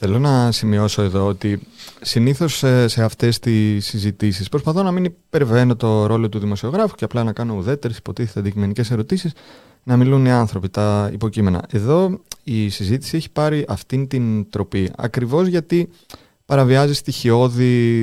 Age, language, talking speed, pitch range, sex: 30-49, Greek, 145 wpm, 105-145 Hz, male